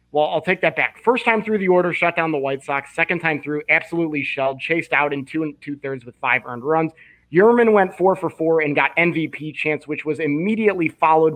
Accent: American